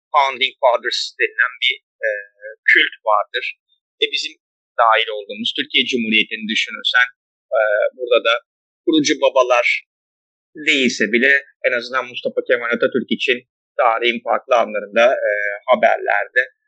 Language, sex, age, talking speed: Turkish, male, 30-49, 115 wpm